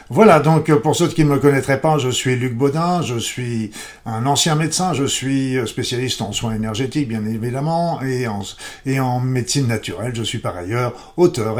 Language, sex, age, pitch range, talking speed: French, male, 50-69, 115-145 Hz, 185 wpm